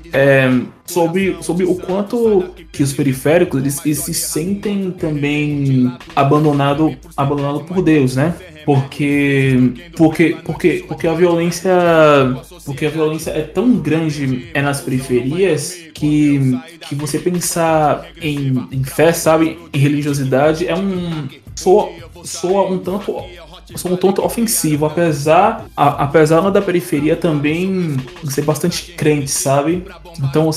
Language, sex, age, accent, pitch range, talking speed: Portuguese, male, 20-39, Brazilian, 140-170 Hz, 130 wpm